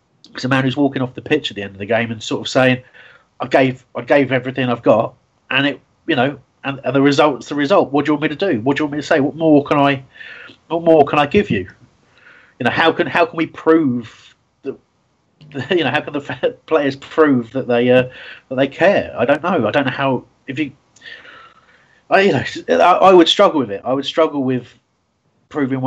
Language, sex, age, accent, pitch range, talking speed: English, male, 30-49, British, 110-140 Hz, 245 wpm